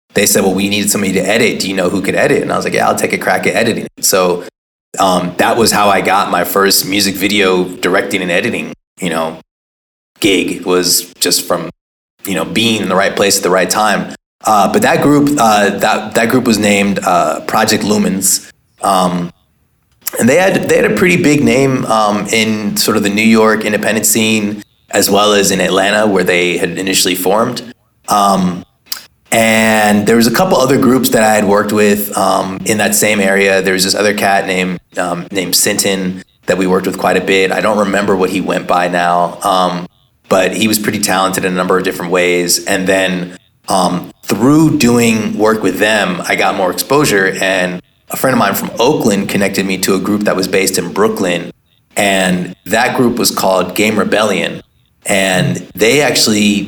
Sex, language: male, English